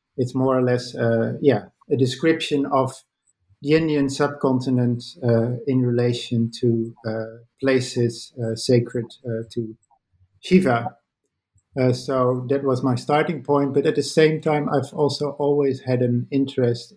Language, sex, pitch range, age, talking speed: English, male, 120-140 Hz, 50-69, 145 wpm